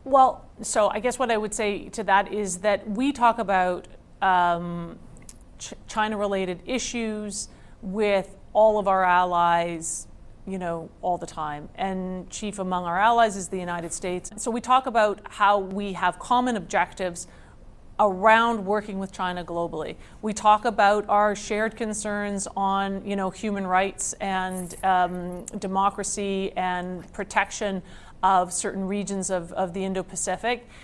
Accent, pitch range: American, 185-220 Hz